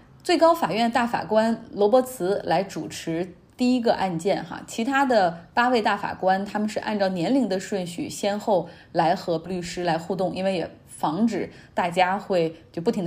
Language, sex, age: Chinese, female, 20-39